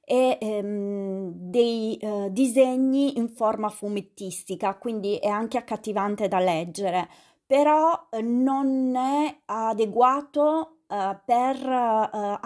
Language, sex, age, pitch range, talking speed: Italian, female, 30-49, 200-250 Hz, 105 wpm